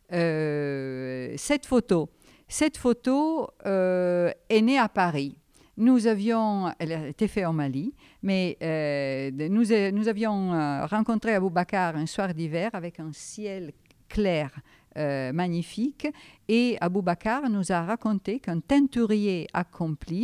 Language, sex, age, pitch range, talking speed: French, female, 50-69, 165-225 Hz, 125 wpm